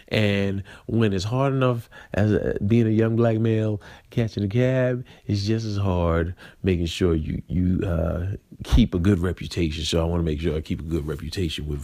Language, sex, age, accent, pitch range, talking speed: English, male, 40-59, American, 85-110 Hz, 205 wpm